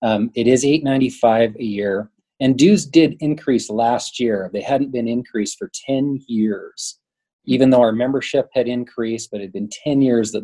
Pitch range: 105-130 Hz